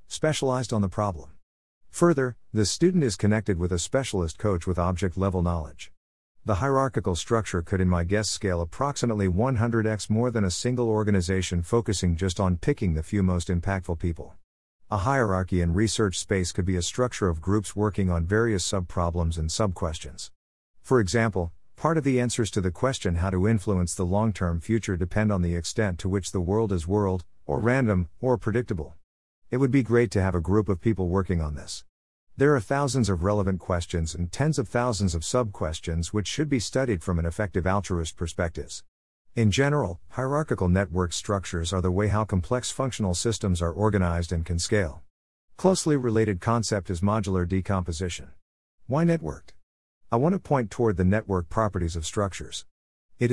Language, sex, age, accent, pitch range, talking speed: English, male, 50-69, American, 85-115 Hz, 180 wpm